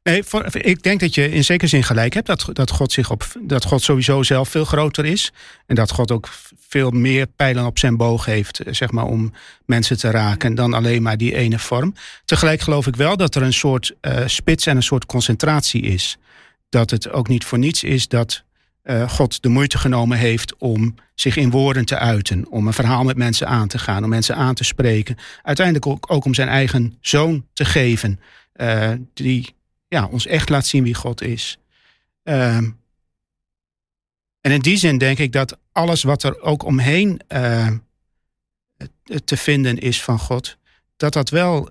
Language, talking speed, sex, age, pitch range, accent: Dutch, 190 wpm, male, 40-59, 120-145 Hz, Dutch